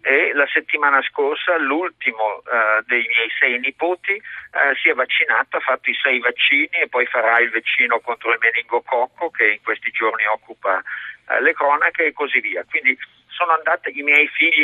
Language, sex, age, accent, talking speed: Italian, male, 50-69, native, 180 wpm